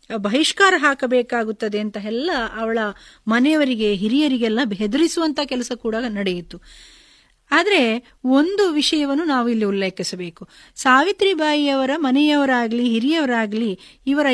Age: 30-49